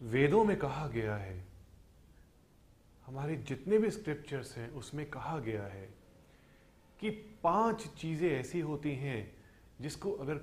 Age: 30-49